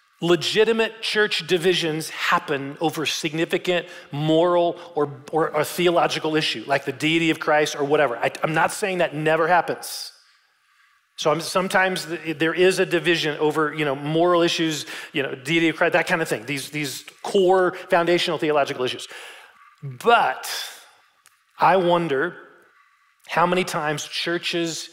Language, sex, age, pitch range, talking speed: English, male, 40-59, 140-175 Hz, 145 wpm